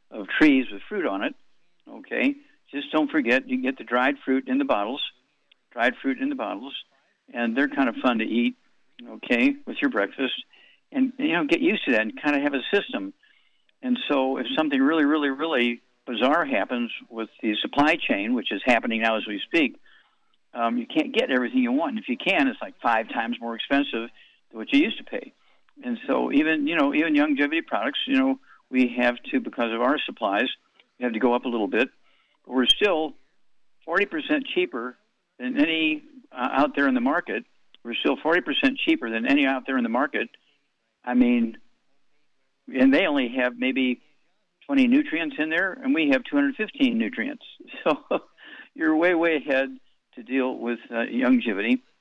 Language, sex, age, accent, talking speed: English, male, 60-79, American, 190 wpm